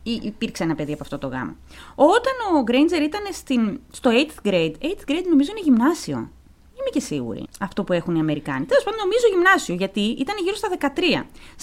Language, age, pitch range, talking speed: Greek, 20-39, 195-310 Hz, 190 wpm